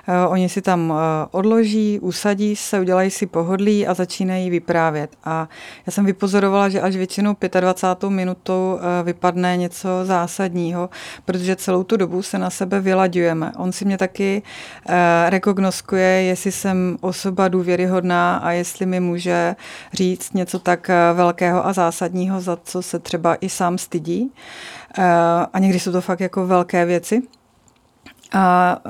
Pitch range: 175-190 Hz